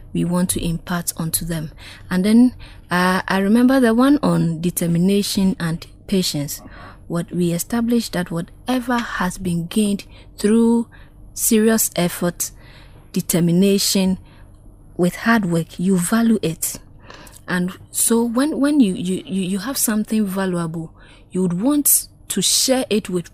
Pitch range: 170-210 Hz